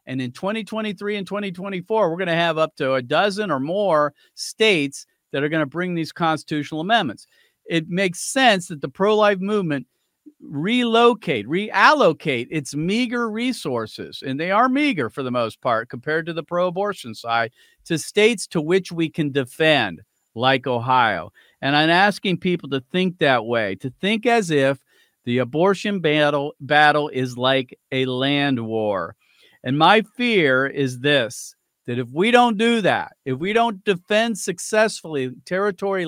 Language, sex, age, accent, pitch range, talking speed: English, male, 50-69, American, 140-200 Hz, 160 wpm